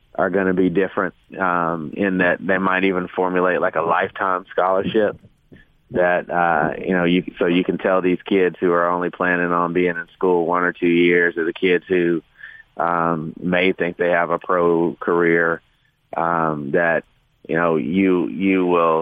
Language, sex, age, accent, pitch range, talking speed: English, male, 30-49, American, 85-95 Hz, 185 wpm